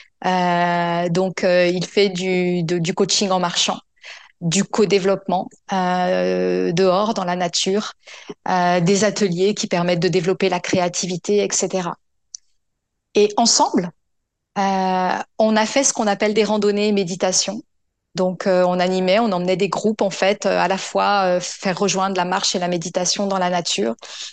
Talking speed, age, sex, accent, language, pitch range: 160 wpm, 30-49, female, French, French, 180-215 Hz